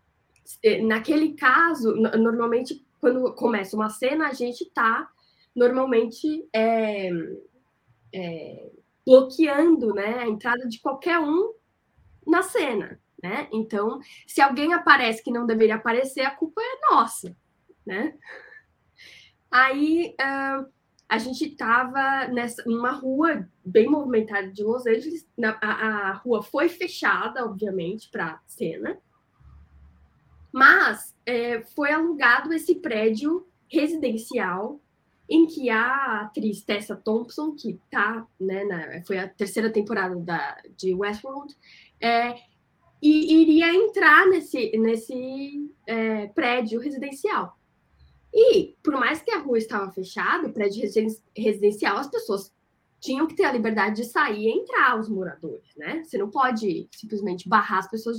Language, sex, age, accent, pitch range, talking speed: Portuguese, female, 10-29, Brazilian, 215-300 Hz, 120 wpm